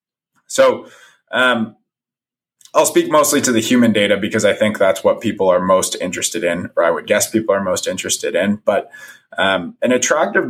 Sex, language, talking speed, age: male, English, 185 wpm, 20-39